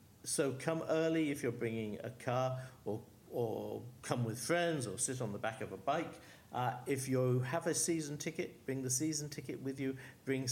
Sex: male